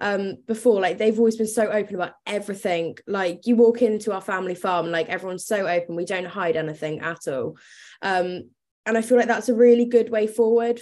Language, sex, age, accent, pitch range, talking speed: English, female, 20-39, British, 190-235 Hz, 210 wpm